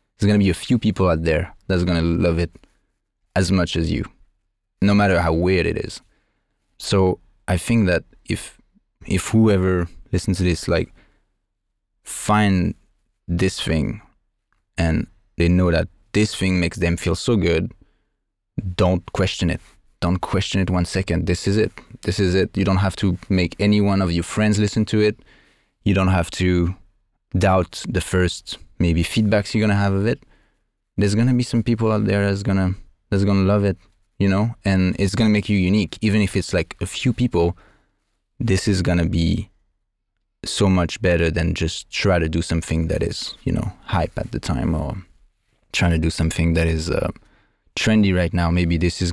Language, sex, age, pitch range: English, male, 20-39, 85-100 Hz